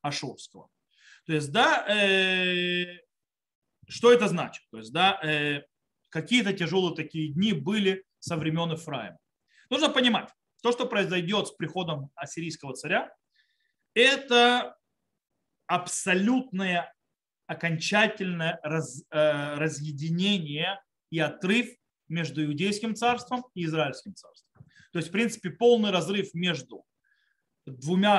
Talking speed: 100 wpm